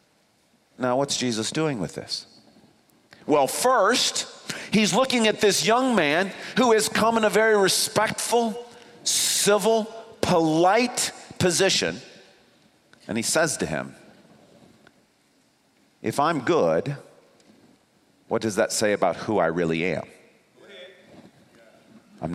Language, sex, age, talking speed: English, male, 40-59, 115 wpm